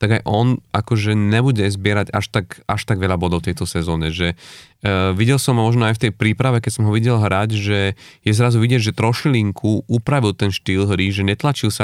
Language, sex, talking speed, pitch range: Slovak, male, 215 wpm, 100-115 Hz